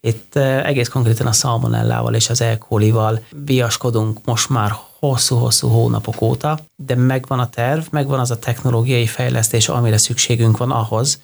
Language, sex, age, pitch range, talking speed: Hungarian, male, 30-49, 115-135 Hz, 150 wpm